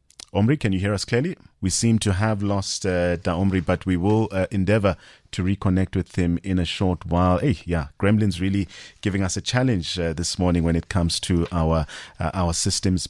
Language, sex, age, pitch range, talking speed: English, male, 30-49, 90-110 Hz, 205 wpm